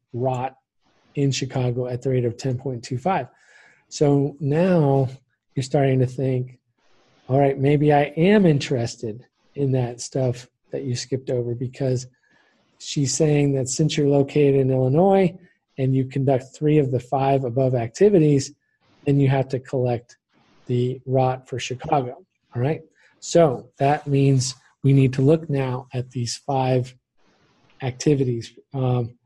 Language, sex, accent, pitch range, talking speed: English, male, American, 130-145 Hz, 140 wpm